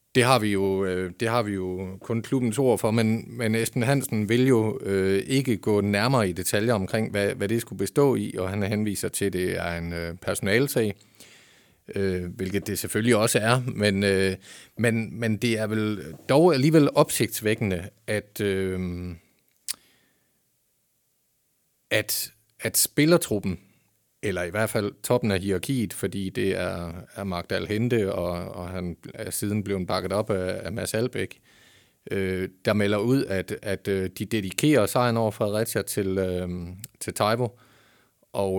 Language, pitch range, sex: Danish, 95-120 Hz, male